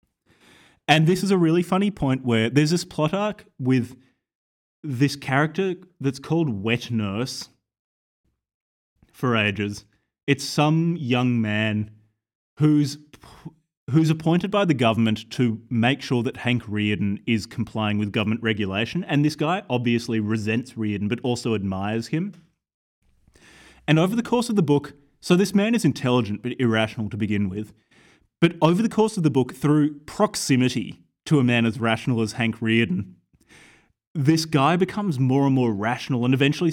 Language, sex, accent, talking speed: English, male, Australian, 155 wpm